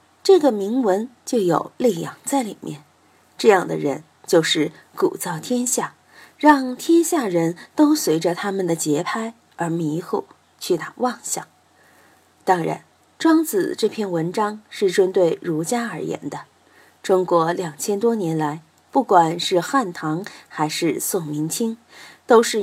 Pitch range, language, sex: 170-255 Hz, Chinese, female